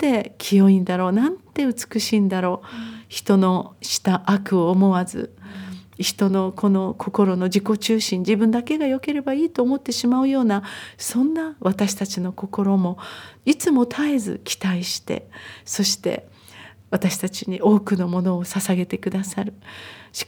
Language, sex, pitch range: Japanese, female, 185-230 Hz